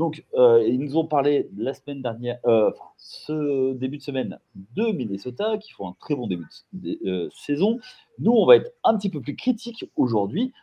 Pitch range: 110-165 Hz